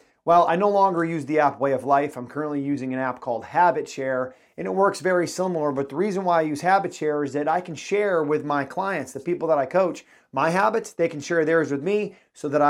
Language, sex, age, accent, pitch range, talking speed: English, male, 30-49, American, 145-185 Hz, 255 wpm